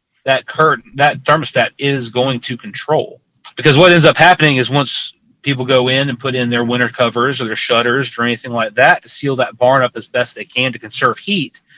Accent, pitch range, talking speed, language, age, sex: American, 120-145 Hz, 210 wpm, English, 30-49, male